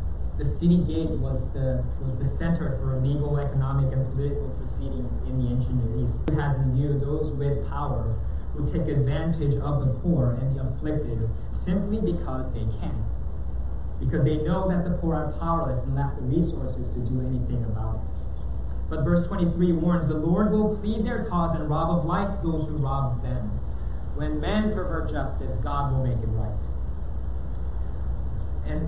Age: 20-39